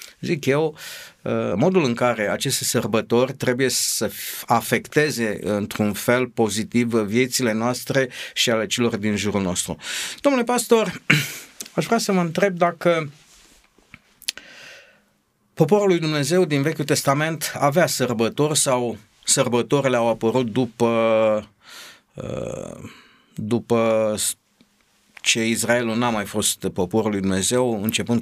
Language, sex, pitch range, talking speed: Romanian, male, 110-160 Hz, 115 wpm